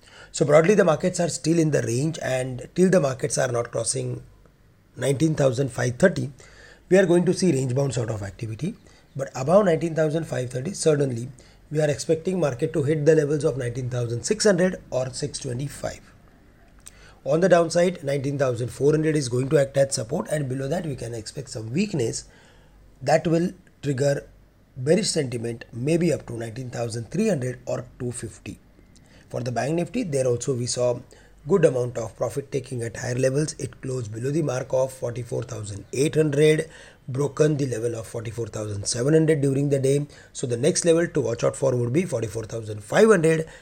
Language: English